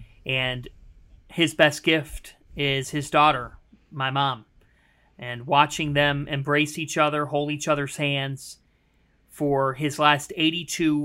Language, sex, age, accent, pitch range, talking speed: English, male, 40-59, American, 135-160 Hz, 125 wpm